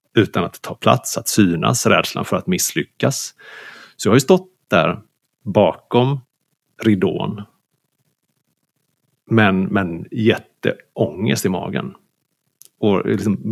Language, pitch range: Swedish, 95-135 Hz